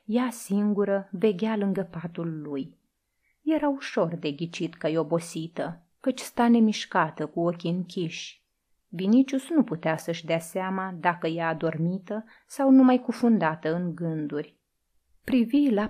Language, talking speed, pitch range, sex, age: Romanian, 130 wpm, 170-230 Hz, female, 30-49